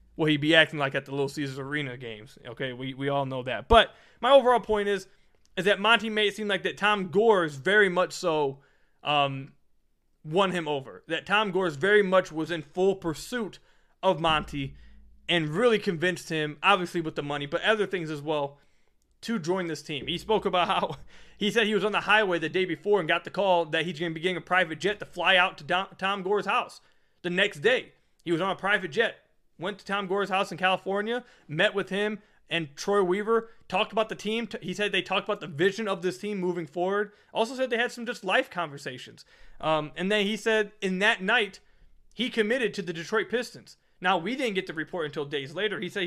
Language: English